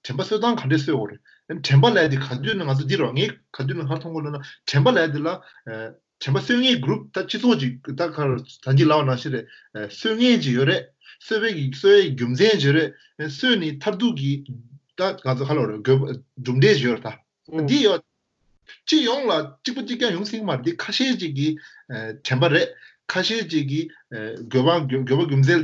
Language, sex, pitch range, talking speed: English, male, 130-170 Hz, 80 wpm